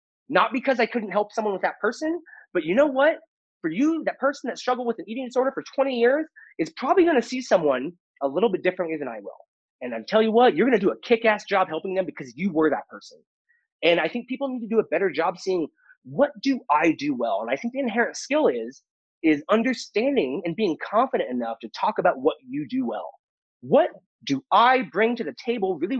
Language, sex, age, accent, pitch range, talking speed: English, male, 30-49, American, 185-300 Hz, 235 wpm